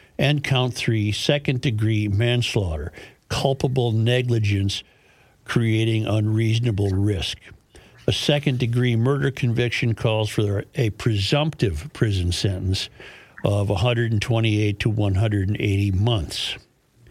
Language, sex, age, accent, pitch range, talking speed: English, male, 60-79, American, 105-130 Hz, 90 wpm